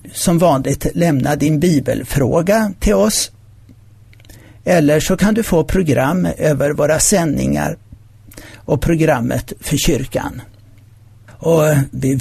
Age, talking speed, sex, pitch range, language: 60-79, 110 wpm, male, 115-165 Hz, Swedish